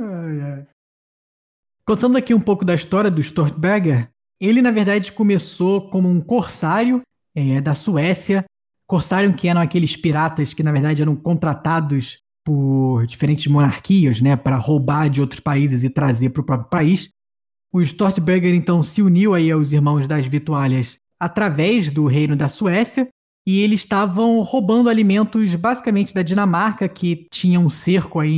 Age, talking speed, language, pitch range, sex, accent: 20-39, 155 wpm, Portuguese, 155-215 Hz, male, Brazilian